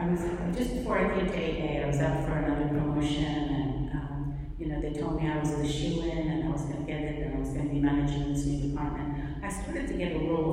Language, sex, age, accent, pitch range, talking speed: English, female, 40-59, American, 145-160 Hz, 285 wpm